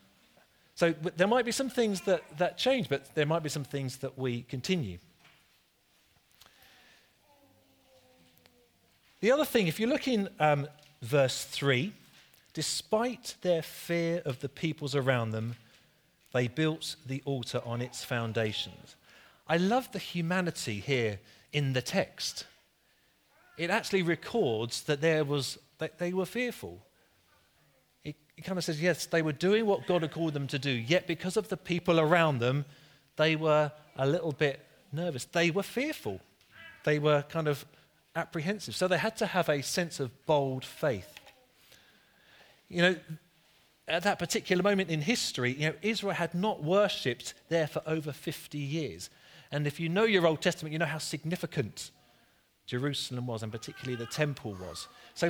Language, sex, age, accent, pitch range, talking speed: English, male, 40-59, British, 135-180 Hz, 160 wpm